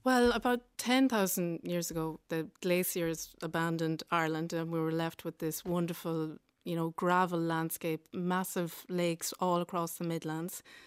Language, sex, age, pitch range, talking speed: English, female, 30-49, 170-200 Hz, 145 wpm